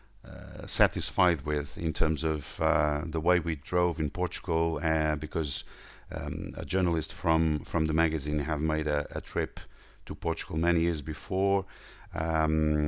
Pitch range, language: 80-95 Hz, English